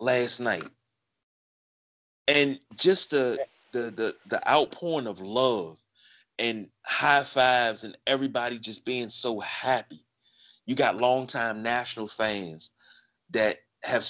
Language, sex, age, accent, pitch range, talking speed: English, male, 30-49, American, 115-145 Hz, 115 wpm